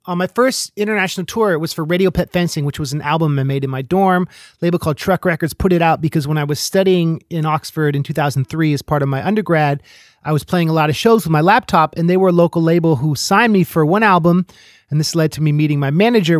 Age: 30-49